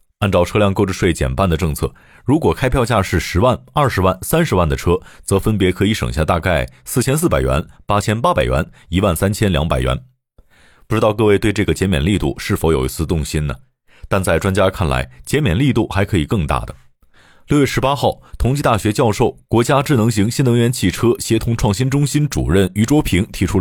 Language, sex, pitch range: Chinese, male, 85-125 Hz